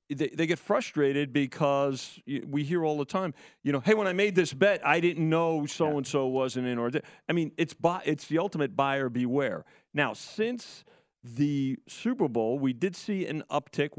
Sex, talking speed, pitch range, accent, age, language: male, 190 wpm, 120-160 Hz, American, 40-59, English